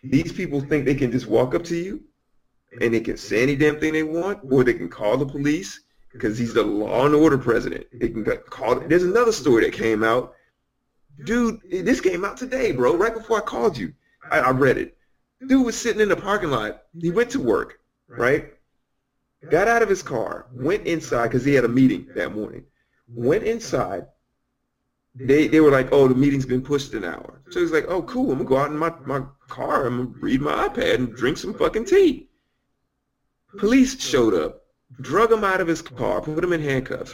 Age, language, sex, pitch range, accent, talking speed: 40-59, English, male, 130-215 Hz, American, 215 wpm